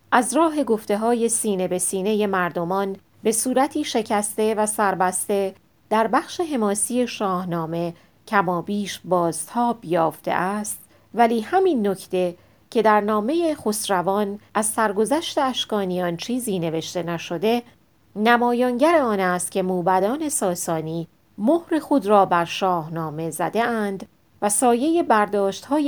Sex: female